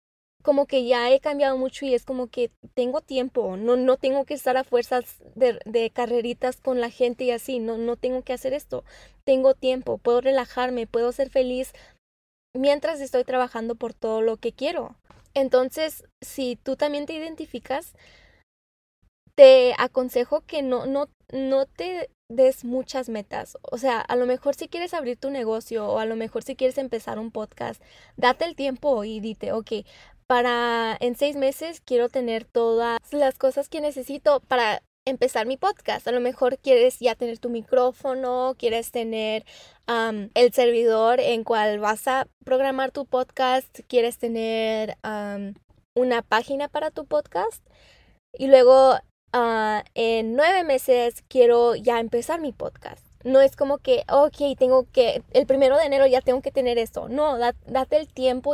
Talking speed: 165 wpm